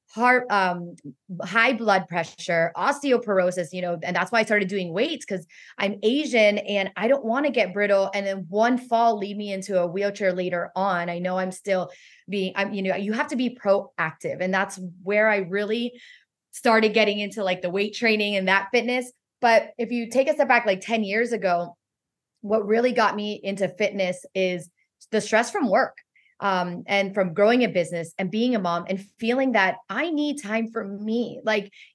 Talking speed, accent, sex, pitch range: 195 wpm, American, female, 190-230 Hz